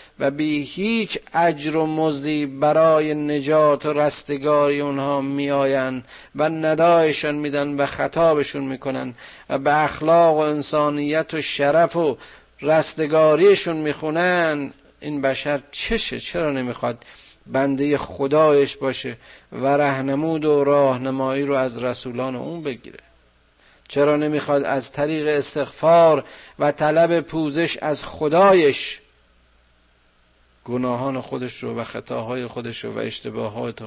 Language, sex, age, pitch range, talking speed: Persian, male, 50-69, 105-150 Hz, 110 wpm